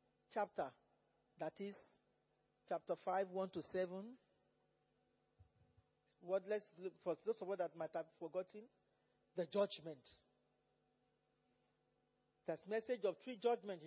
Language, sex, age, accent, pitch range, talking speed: English, male, 40-59, Nigerian, 175-220 Hz, 115 wpm